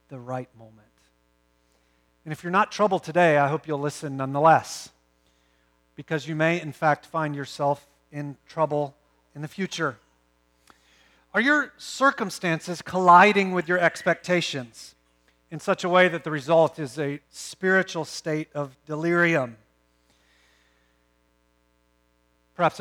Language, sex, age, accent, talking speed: English, male, 40-59, American, 125 wpm